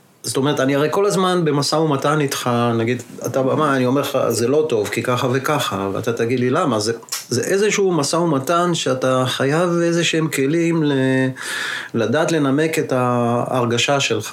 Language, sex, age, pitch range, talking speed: Hebrew, male, 30-49, 125-155 Hz, 170 wpm